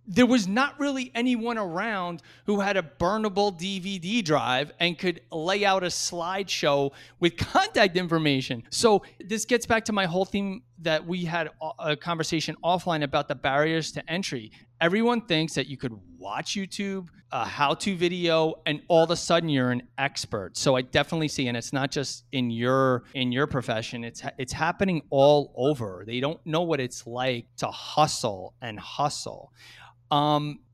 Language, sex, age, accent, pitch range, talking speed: English, male, 30-49, American, 135-180 Hz, 170 wpm